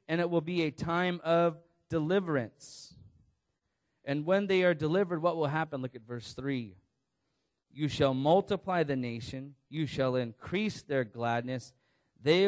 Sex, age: male, 30-49